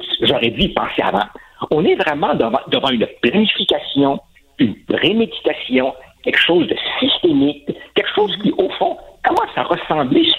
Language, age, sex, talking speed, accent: French, 60-79, male, 150 wpm, French